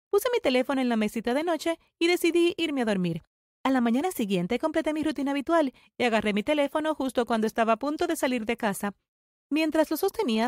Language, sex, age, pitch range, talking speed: Spanish, female, 30-49, 235-335 Hz, 210 wpm